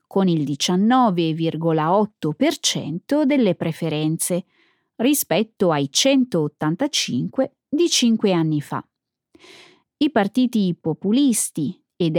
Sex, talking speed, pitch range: female, 80 wpm, 170-275 Hz